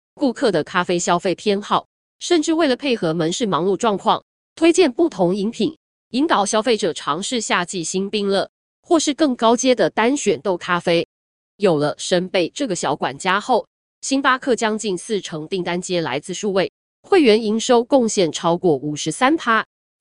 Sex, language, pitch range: female, Chinese, 170-240 Hz